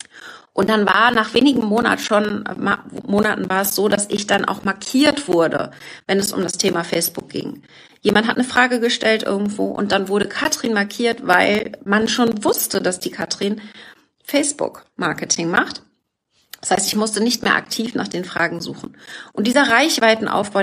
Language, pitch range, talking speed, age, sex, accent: German, 195-235 Hz, 170 wpm, 40-59, female, German